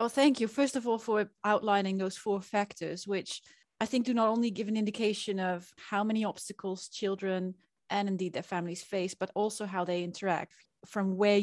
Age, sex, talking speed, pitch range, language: 30-49, female, 195 wpm, 185-220 Hz, English